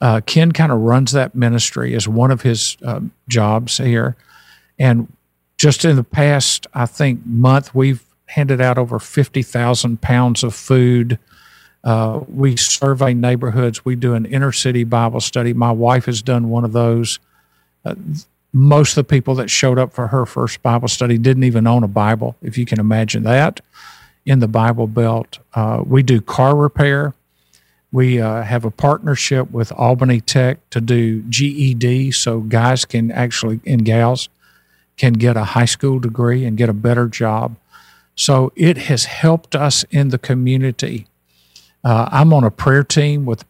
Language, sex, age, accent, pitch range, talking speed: English, male, 50-69, American, 115-130 Hz, 170 wpm